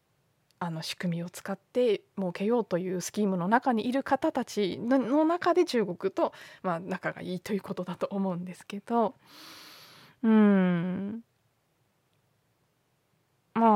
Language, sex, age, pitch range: Japanese, female, 20-39, 170-230 Hz